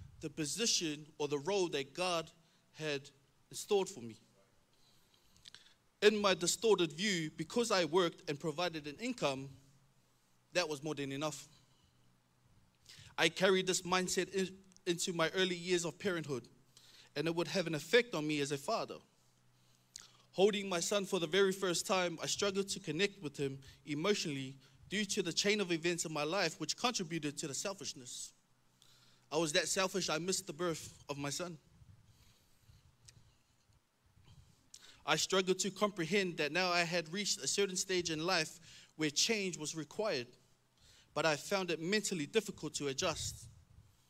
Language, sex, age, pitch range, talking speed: English, male, 20-39, 135-185 Hz, 155 wpm